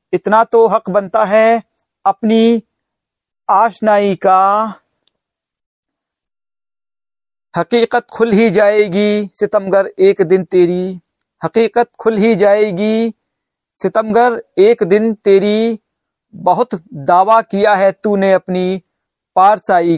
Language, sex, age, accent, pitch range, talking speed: Hindi, male, 50-69, native, 180-220 Hz, 95 wpm